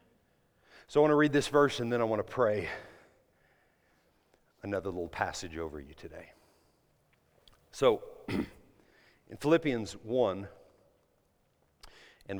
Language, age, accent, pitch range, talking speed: English, 50-69, American, 85-120 Hz, 115 wpm